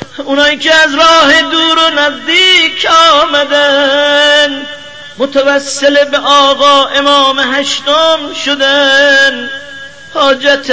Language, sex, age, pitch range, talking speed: Persian, male, 40-59, 275-320 Hz, 85 wpm